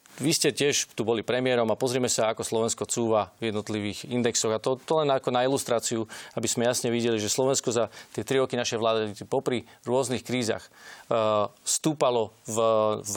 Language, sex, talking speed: Slovak, male, 185 wpm